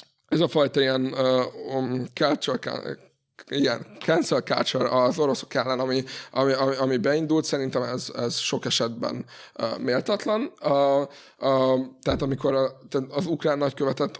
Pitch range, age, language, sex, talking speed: 120-135 Hz, 20-39, Hungarian, male, 135 wpm